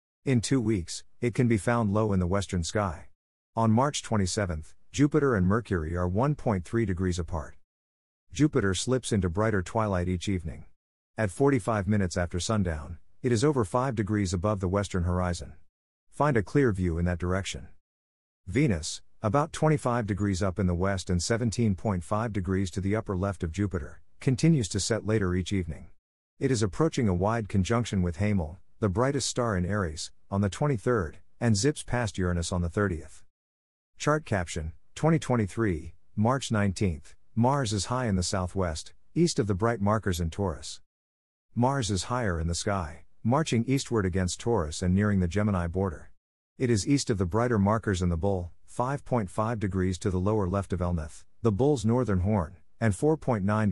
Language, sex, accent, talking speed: English, male, American, 170 wpm